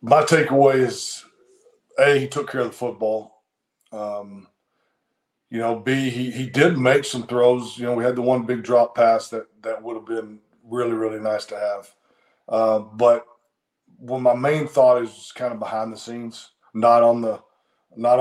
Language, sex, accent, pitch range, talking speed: English, male, American, 110-130 Hz, 180 wpm